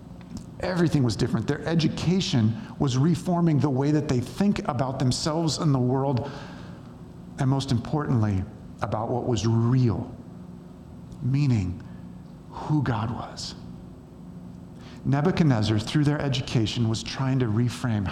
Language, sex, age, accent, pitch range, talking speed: English, male, 50-69, American, 110-140 Hz, 120 wpm